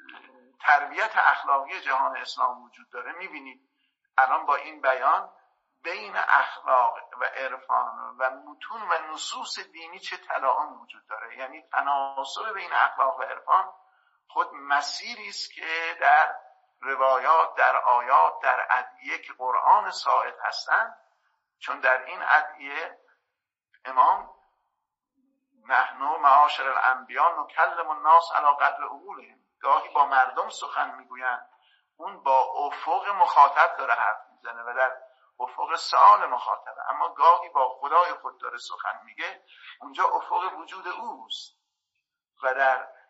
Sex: male